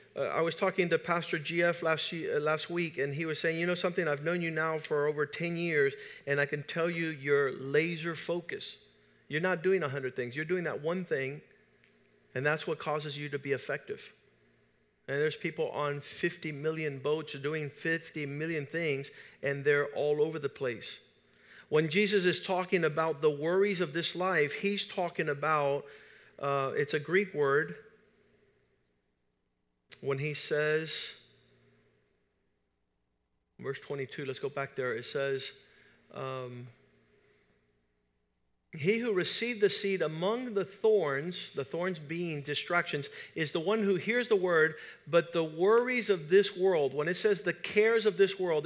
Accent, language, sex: American, English, male